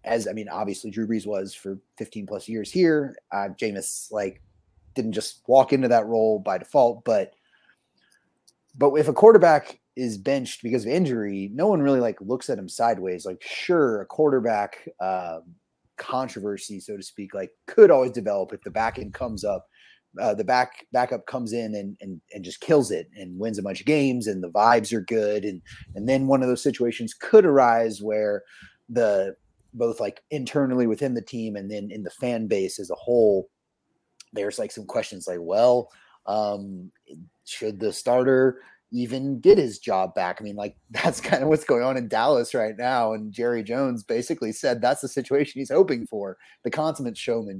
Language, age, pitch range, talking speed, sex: English, 30-49, 105-135 Hz, 190 wpm, male